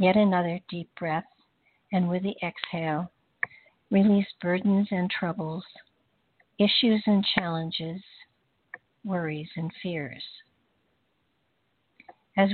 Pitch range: 175-200 Hz